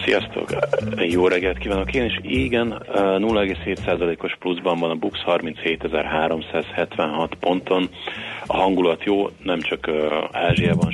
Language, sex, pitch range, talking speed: Hungarian, male, 80-95 Hz, 110 wpm